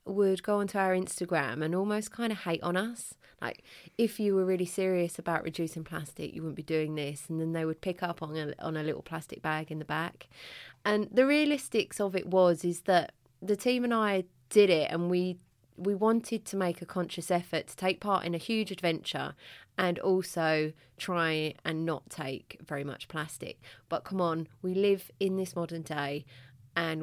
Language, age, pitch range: English, 30-49, 160-195 Hz